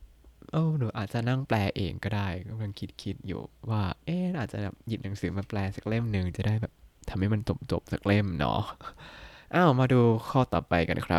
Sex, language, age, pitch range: male, Thai, 20-39, 100-145 Hz